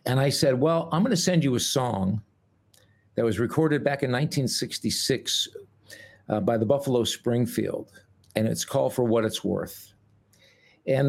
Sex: male